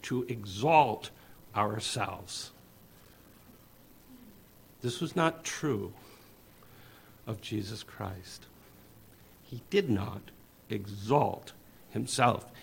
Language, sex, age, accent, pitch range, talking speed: English, male, 60-79, American, 105-145 Hz, 70 wpm